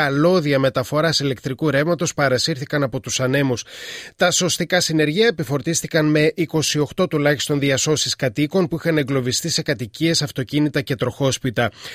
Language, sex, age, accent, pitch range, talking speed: Greek, male, 30-49, native, 135-170 Hz, 125 wpm